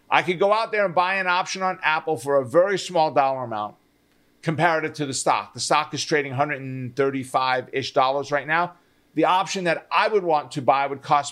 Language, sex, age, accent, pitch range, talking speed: English, male, 50-69, American, 135-180 Hz, 200 wpm